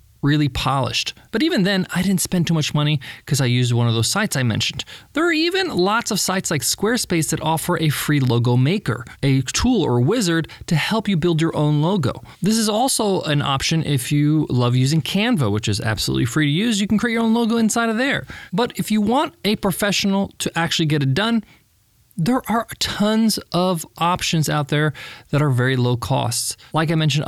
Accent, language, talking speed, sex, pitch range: American, English, 210 wpm, male, 135-200 Hz